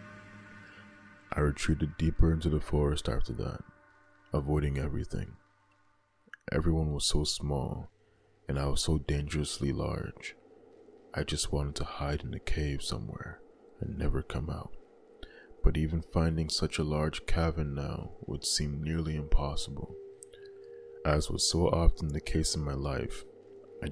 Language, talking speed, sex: English, 140 wpm, male